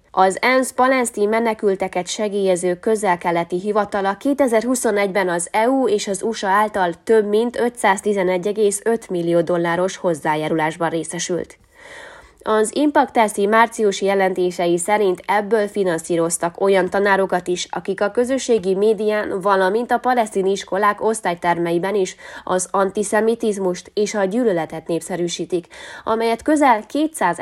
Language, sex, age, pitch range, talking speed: Hungarian, female, 20-39, 180-225 Hz, 110 wpm